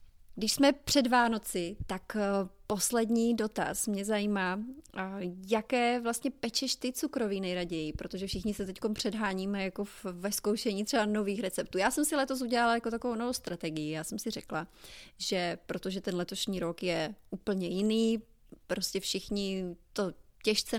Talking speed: 155 wpm